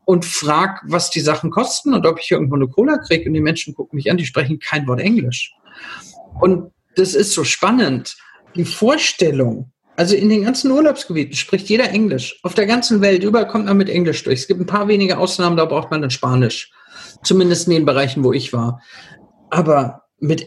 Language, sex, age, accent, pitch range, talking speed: German, male, 50-69, German, 170-215 Hz, 200 wpm